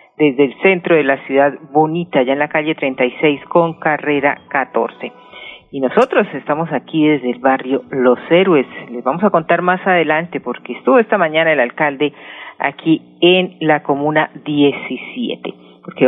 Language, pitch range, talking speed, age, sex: Spanish, 140-170 Hz, 155 wpm, 40-59, female